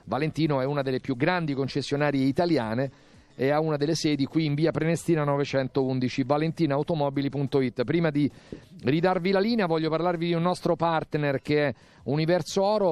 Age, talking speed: 40-59, 160 wpm